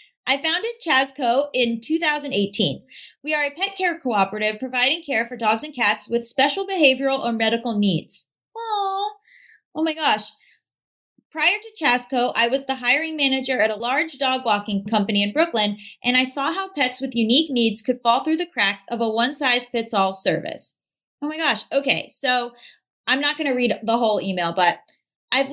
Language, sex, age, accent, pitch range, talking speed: English, female, 30-49, American, 220-285 Hz, 175 wpm